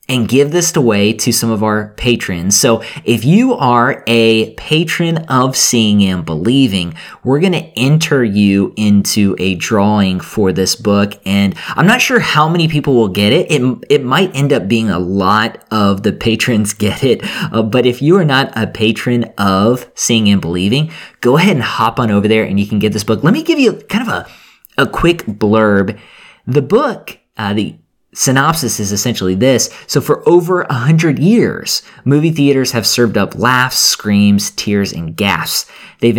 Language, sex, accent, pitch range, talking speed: English, male, American, 105-145 Hz, 185 wpm